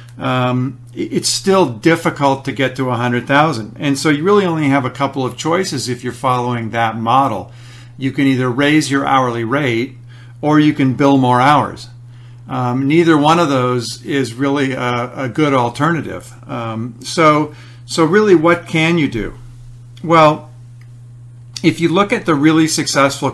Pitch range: 120-145 Hz